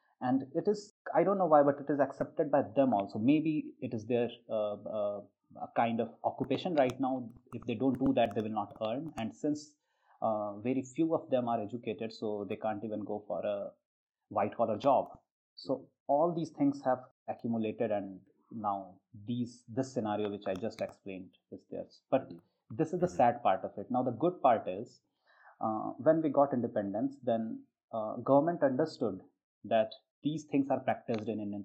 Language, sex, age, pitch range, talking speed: Slovak, male, 30-49, 110-145 Hz, 190 wpm